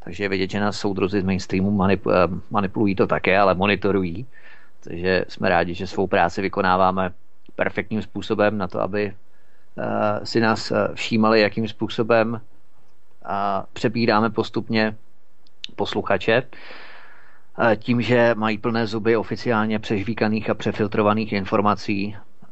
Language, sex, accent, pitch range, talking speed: Czech, male, native, 100-115 Hz, 115 wpm